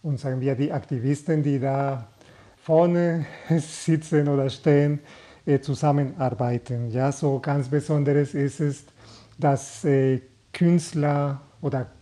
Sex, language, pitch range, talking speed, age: male, German, 135-150 Hz, 105 wpm, 40-59